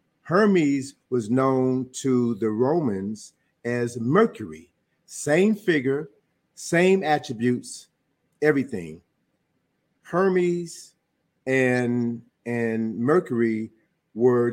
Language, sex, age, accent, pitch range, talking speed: English, male, 50-69, American, 120-150 Hz, 75 wpm